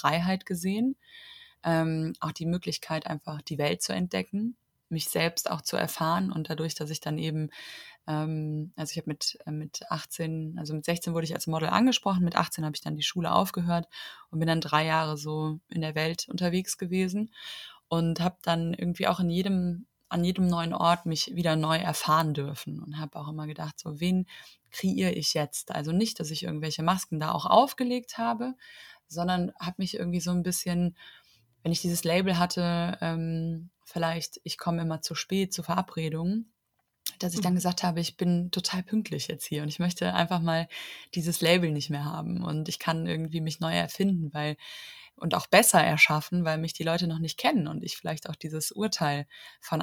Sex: female